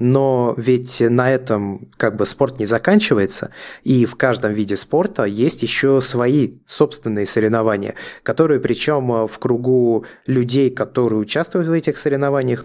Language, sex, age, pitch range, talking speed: Russian, male, 20-39, 110-135 Hz, 140 wpm